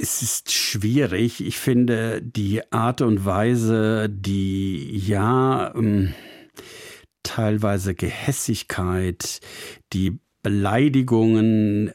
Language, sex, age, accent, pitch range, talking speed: German, male, 60-79, German, 95-115 Hz, 75 wpm